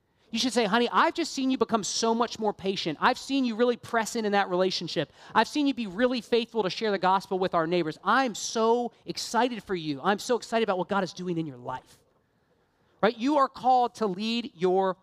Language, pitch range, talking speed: English, 190-245 Hz, 230 wpm